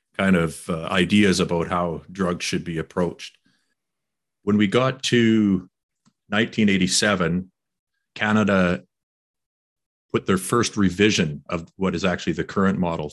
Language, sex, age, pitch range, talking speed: English, male, 50-69, 90-105 Hz, 125 wpm